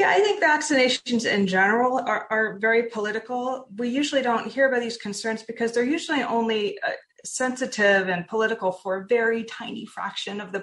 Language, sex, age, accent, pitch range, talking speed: English, female, 30-49, American, 170-230 Hz, 175 wpm